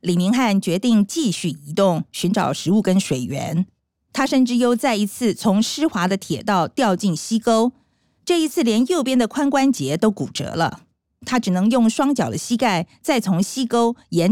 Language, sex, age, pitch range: Chinese, female, 50-69, 180-260 Hz